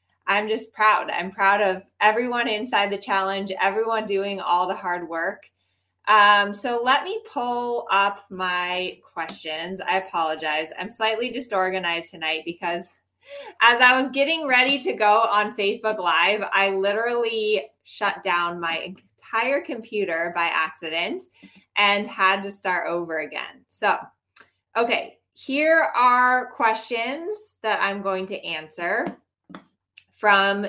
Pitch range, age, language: 190-245 Hz, 20-39, English